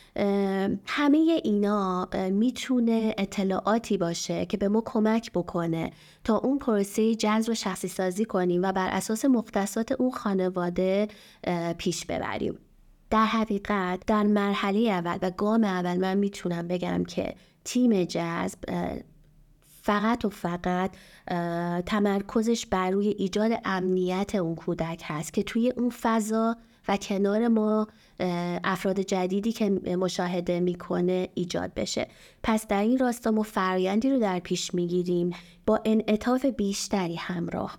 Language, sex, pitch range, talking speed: Persian, female, 180-220 Hz, 130 wpm